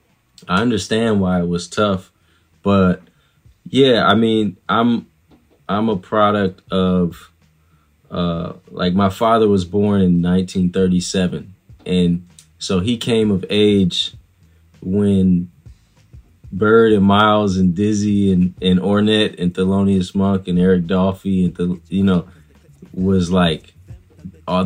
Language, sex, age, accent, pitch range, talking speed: English, male, 20-39, American, 90-105 Hz, 125 wpm